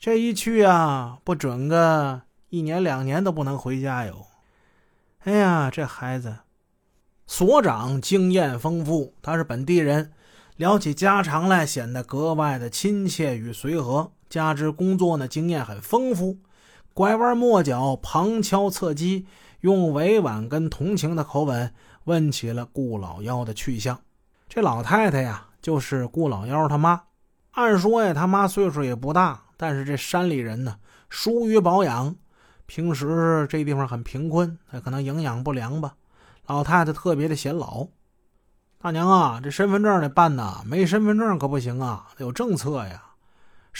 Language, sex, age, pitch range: Chinese, male, 30-49, 125-180 Hz